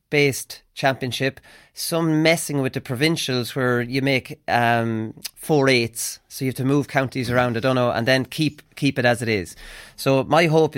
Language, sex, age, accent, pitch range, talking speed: English, male, 30-49, Irish, 125-155 Hz, 185 wpm